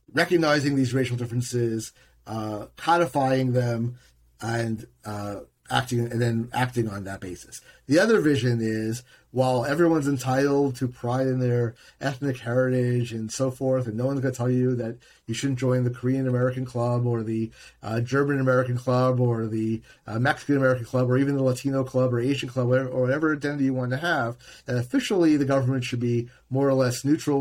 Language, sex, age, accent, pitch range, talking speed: English, male, 40-59, American, 115-135 Hz, 185 wpm